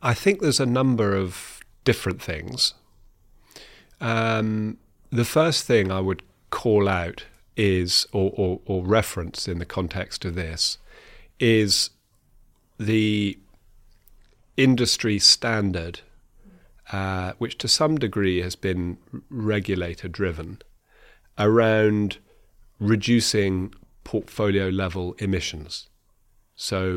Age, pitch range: 40-59, 90-110 Hz